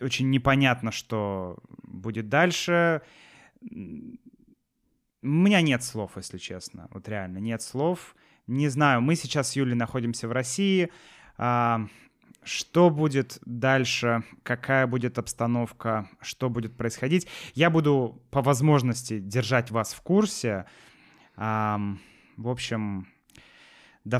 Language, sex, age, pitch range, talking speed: Russian, male, 20-39, 105-135 Hz, 110 wpm